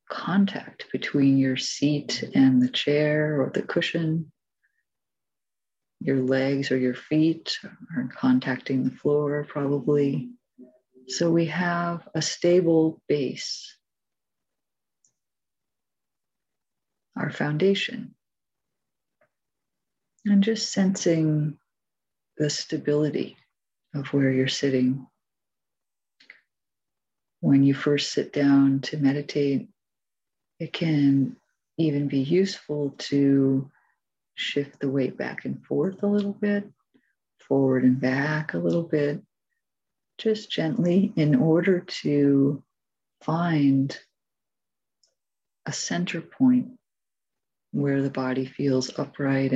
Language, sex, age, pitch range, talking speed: English, female, 50-69, 135-170 Hz, 95 wpm